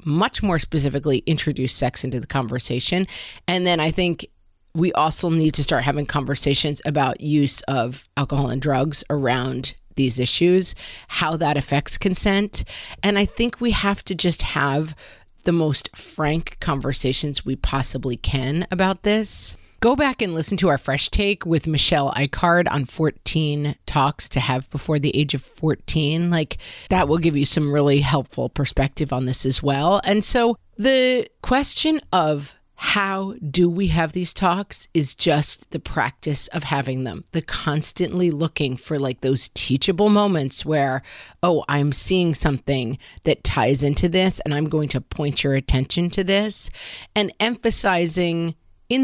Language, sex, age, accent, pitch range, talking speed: English, female, 40-59, American, 140-185 Hz, 160 wpm